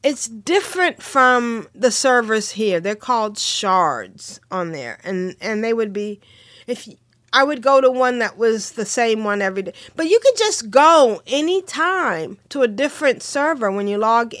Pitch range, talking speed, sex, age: 195-270 Hz, 180 wpm, female, 40-59